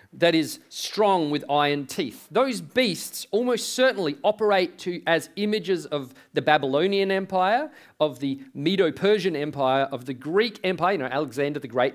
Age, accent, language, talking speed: 40-59, Australian, English, 150 wpm